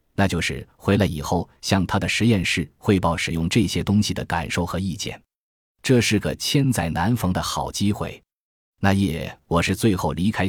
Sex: male